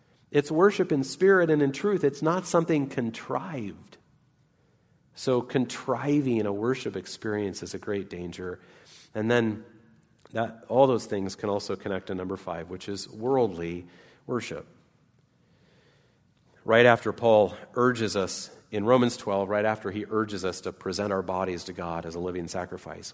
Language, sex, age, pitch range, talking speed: English, male, 40-59, 95-120 Hz, 155 wpm